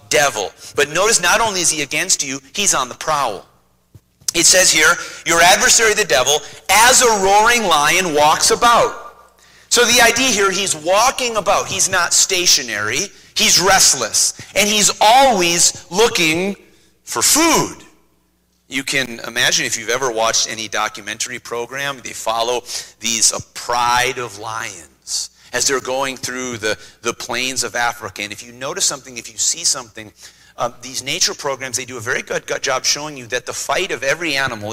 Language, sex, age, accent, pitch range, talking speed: English, male, 40-59, American, 120-200 Hz, 170 wpm